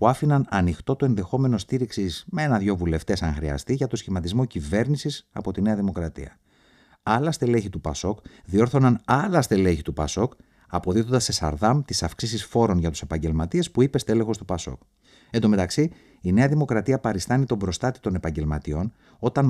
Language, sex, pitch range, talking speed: Greek, male, 90-130 Hz, 165 wpm